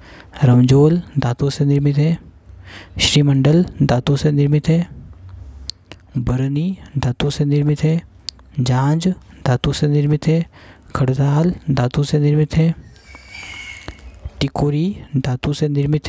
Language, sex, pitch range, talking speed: Hindi, male, 95-150 Hz, 110 wpm